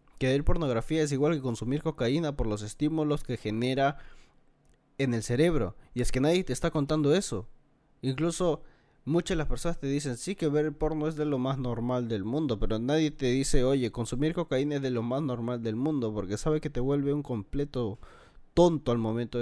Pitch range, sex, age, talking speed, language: 120-155 Hz, male, 20-39, 205 wpm, Spanish